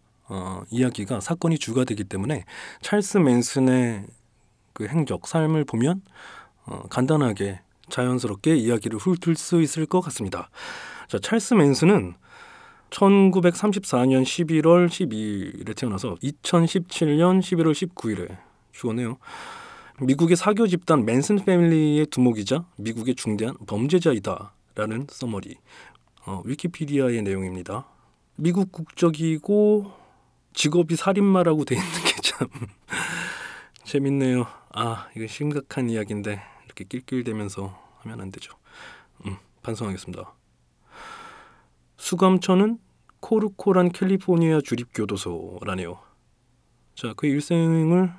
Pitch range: 115-180 Hz